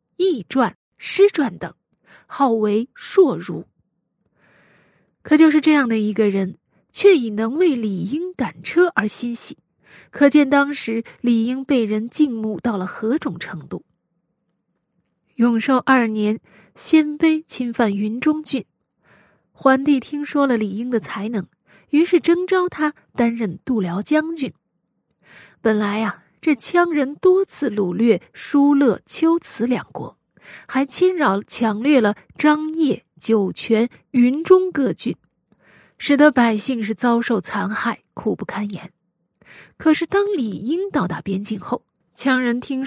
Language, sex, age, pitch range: Chinese, female, 20-39, 210-295 Hz